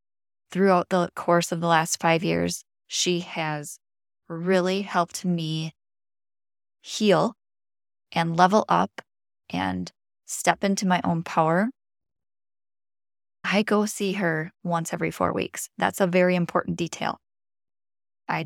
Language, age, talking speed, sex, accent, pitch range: English, 20-39, 120 wpm, female, American, 155-185 Hz